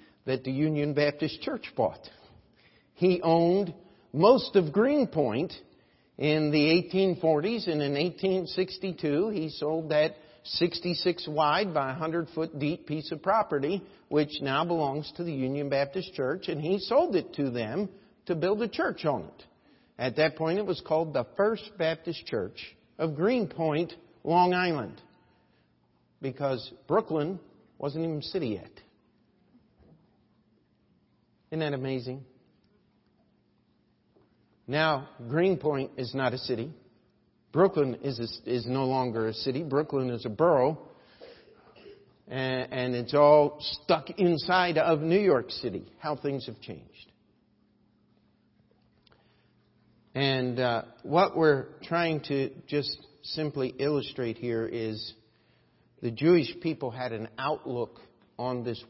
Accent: American